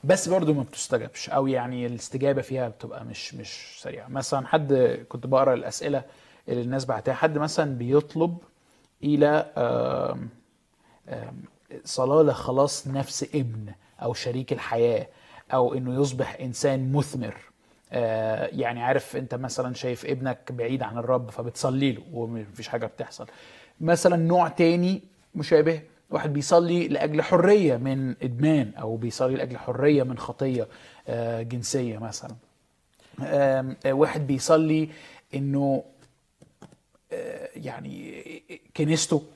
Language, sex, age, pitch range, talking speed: Arabic, male, 20-39, 125-155 Hz, 110 wpm